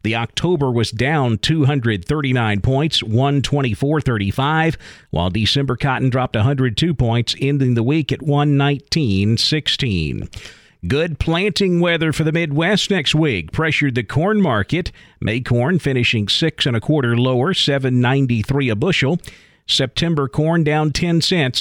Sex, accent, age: male, American, 50-69